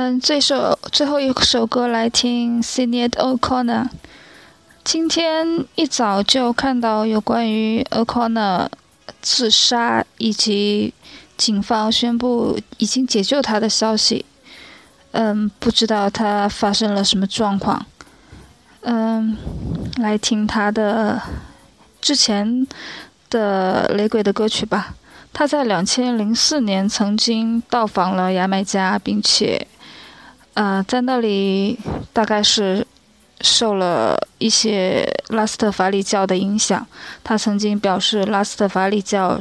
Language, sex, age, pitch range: Chinese, female, 20-39, 200-235 Hz